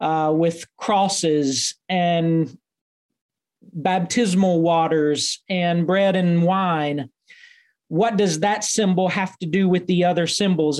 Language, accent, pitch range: English, American, 170-200 Hz